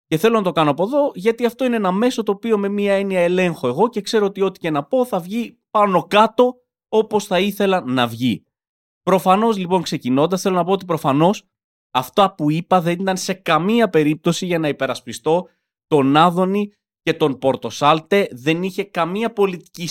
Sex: male